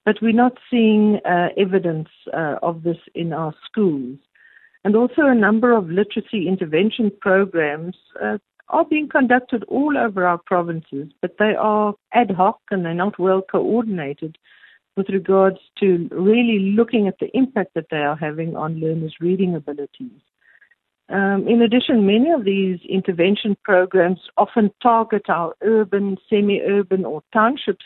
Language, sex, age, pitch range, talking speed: English, female, 60-79, 175-220 Hz, 150 wpm